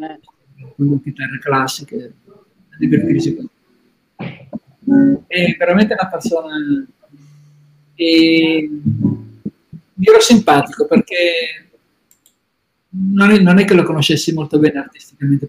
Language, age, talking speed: Italian, 50-69, 80 wpm